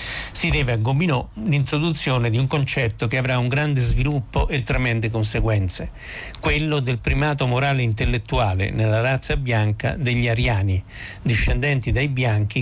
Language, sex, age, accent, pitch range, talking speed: Italian, male, 60-79, native, 110-135 Hz, 140 wpm